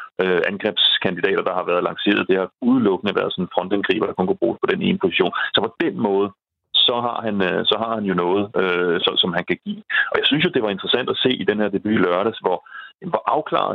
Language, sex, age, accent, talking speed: Danish, male, 30-49, native, 230 wpm